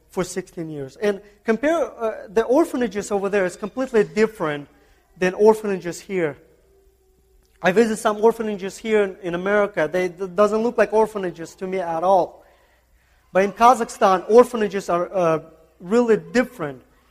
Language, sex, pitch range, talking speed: English, male, 155-205 Hz, 150 wpm